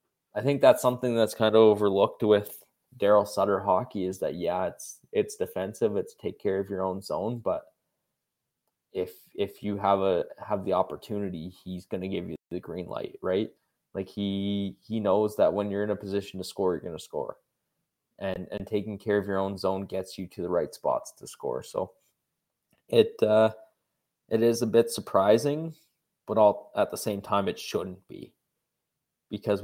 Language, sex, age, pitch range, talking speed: English, male, 20-39, 95-115 Hz, 185 wpm